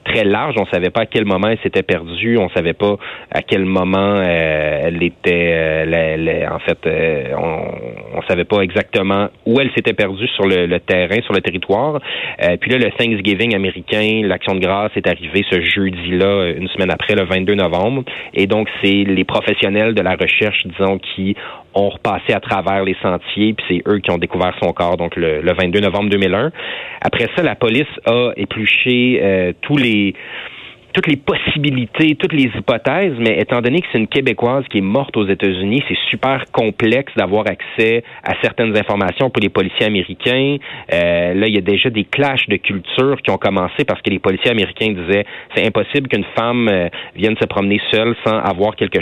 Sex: male